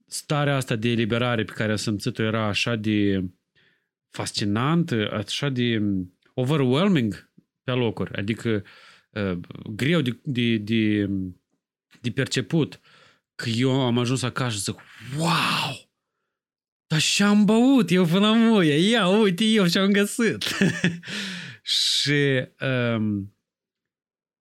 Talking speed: 115 wpm